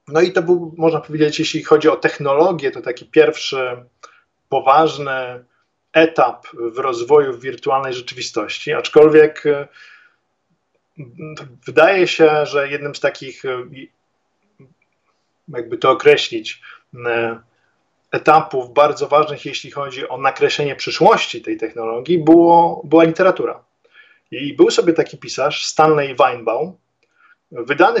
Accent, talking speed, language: native, 105 wpm, Polish